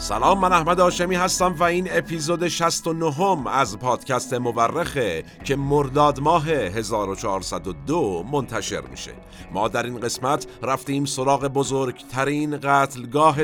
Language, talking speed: Persian, 115 wpm